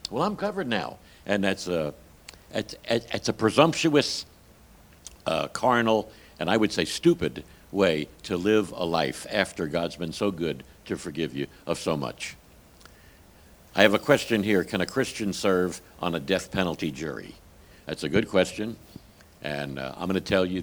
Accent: American